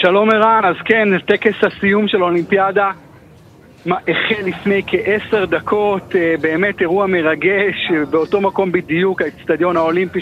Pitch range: 160-195 Hz